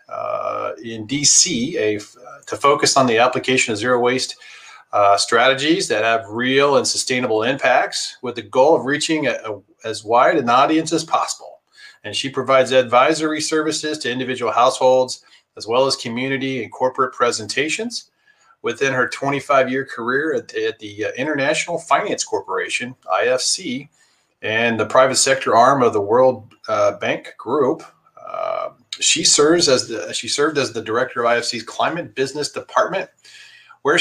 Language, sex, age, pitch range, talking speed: English, male, 40-59, 125-205 Hz, 145 wpm